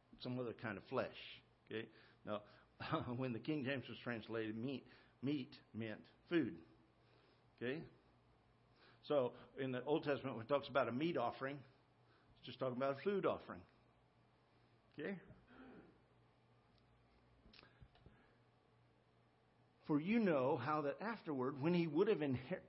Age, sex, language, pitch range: 50-69, male, English, 135-215 Hz